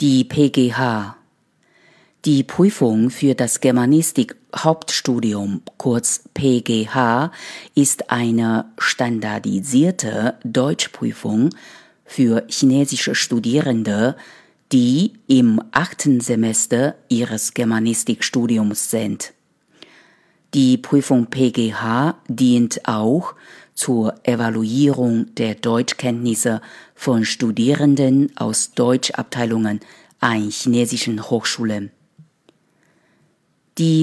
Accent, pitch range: German, 115-140 Hz